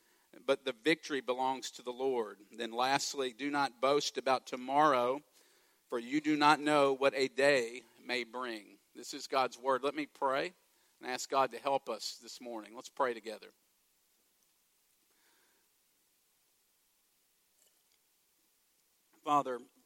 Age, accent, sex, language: 50-69, American, male, English